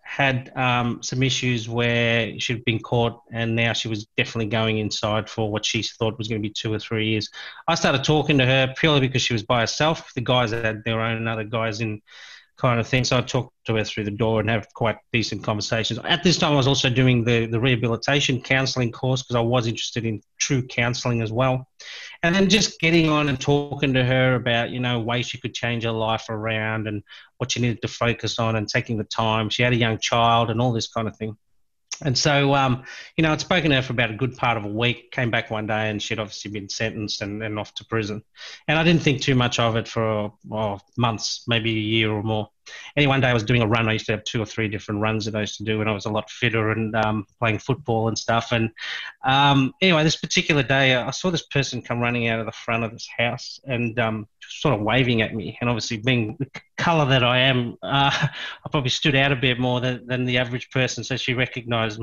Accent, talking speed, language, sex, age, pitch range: Australian, 250 wpm, English, male, 30-49, 110-130 Hz